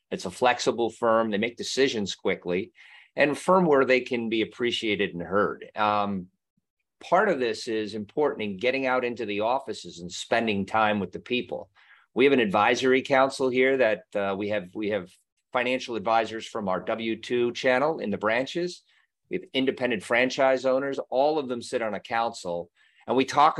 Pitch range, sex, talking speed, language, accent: 105-130 Hz, male, 180 wpm, English, American